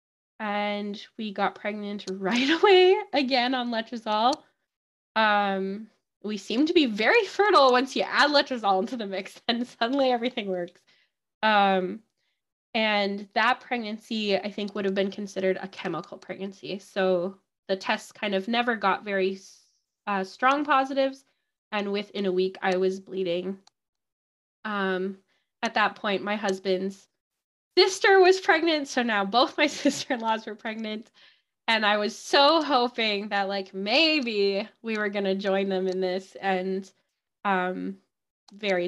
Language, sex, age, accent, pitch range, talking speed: English, female, 10-29, American, 195-240 Hz, 145 wpm